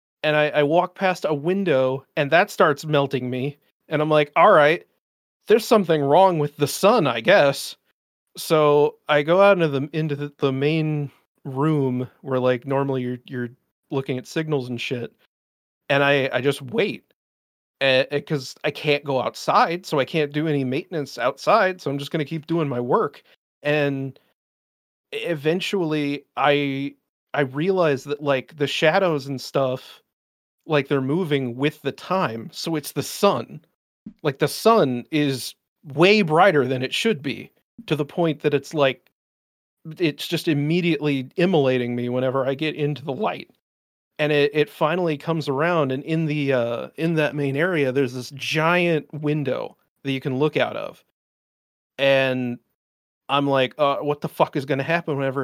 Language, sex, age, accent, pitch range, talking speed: English, male, 30-49, American, 135-160 Hz, 170 wpm